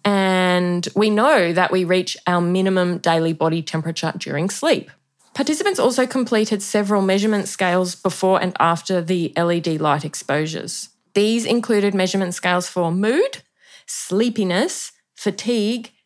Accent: Australian